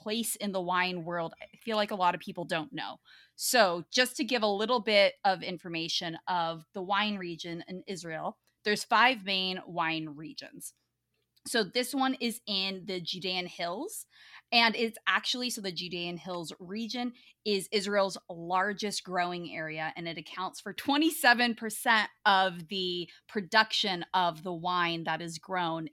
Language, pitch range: English, 175-225 Hz